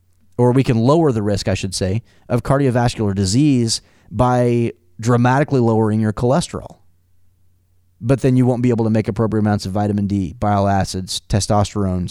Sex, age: male, 30-49